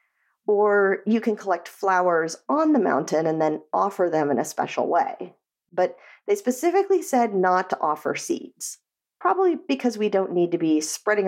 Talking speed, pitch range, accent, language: 170 wpm, 170-250 Hz, American, English